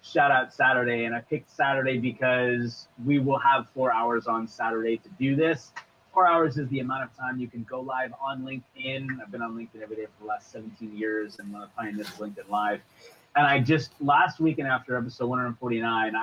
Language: English